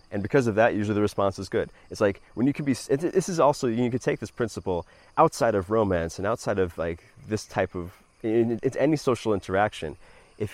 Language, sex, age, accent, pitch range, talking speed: English, male, 30-49, American, 90-115 Hz, 215 wpm